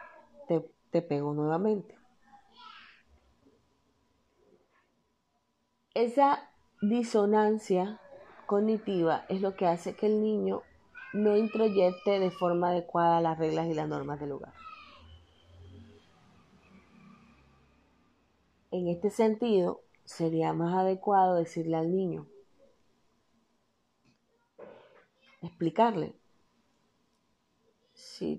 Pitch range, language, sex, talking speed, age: 170-215 Hz, Spanish, female, 80 wpm, 30-49